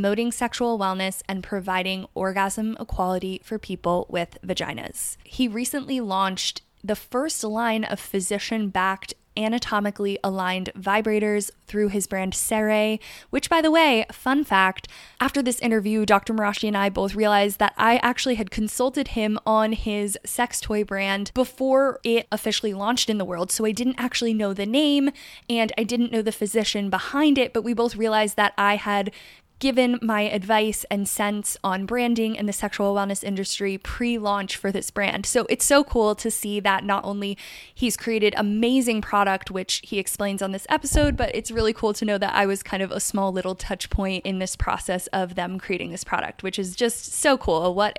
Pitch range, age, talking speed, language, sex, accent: 195-230 Hz, 20-39, 185 wpm, English, female, American